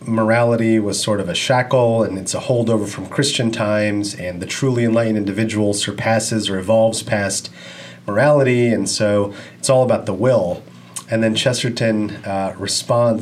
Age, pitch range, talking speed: 30-49, 100-125 Hz, 160 wpm